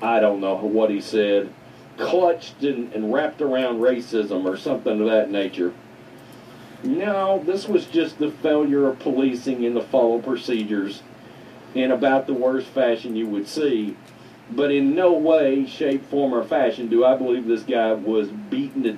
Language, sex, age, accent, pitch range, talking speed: English, male, 50-69, American, 115-175 Hz, 170 wpm